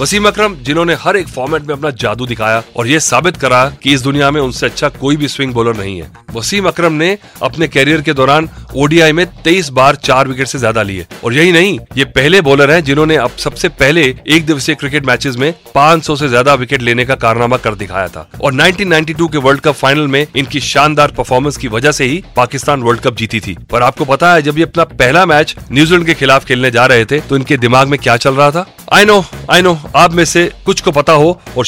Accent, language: native, Hindi